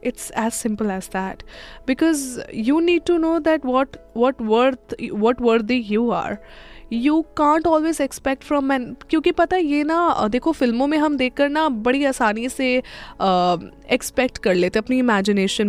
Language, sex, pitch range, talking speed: Hindi, female, 220-305 Hz, 170 wpm